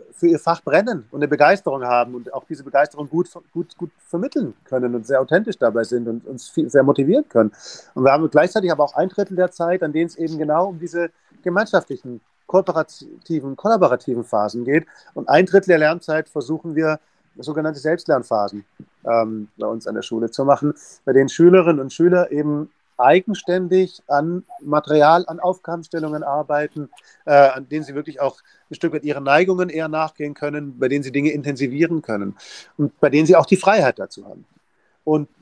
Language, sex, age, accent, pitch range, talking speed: German, male, 40-59, German, 135-170 Hz, 180 wpm